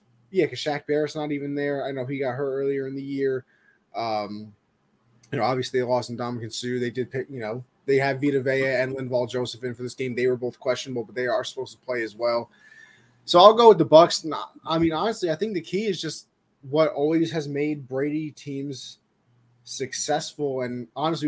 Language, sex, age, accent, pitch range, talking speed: English, male, 20-39, American, 125-165 Hz, 215 wpm